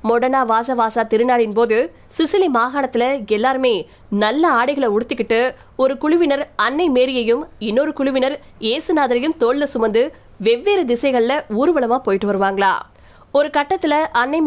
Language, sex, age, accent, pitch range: Tamil, female, 20-39, native, 225-285 Hz